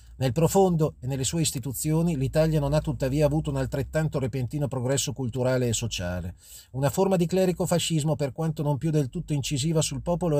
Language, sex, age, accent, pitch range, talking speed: Italian, male, 40-59, native, 135-175 Hz, 185 wpm